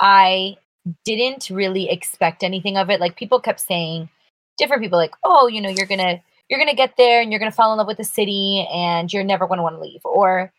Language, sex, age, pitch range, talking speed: English, female, 20-39, 165-200 Hz, 245 wpm